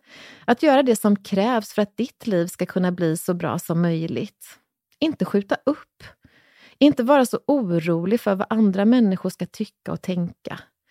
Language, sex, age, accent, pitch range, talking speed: English, female, 30-49, Swedish, 180-240 Hz, 170 wpm